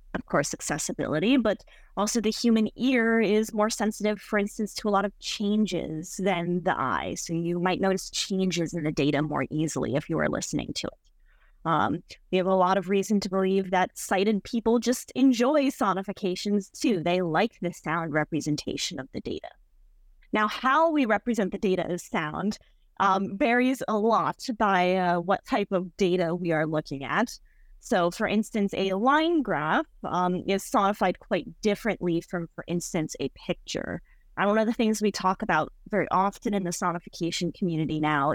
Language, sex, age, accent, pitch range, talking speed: English, female, 30-49, American, 175-215 Hz, 180 wpm